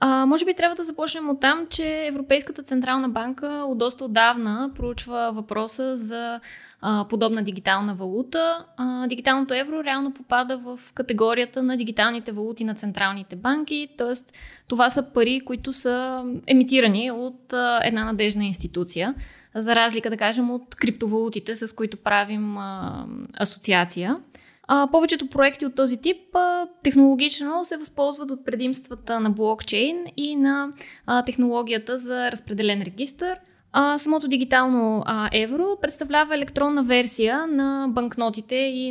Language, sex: Bulgarian, female